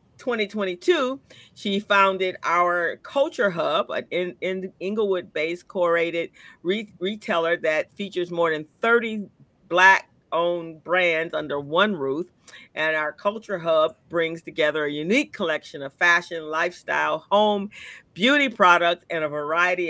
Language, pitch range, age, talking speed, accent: English, 165-205 Hz, 50-69, 125 wpm, American